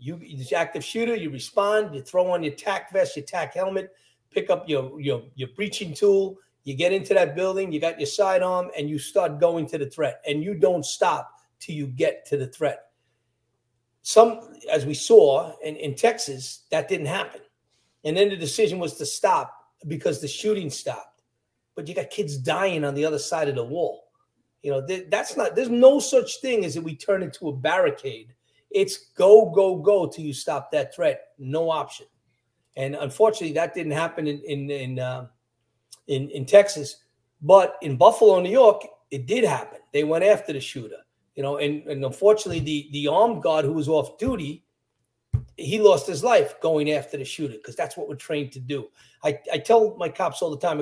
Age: 40-59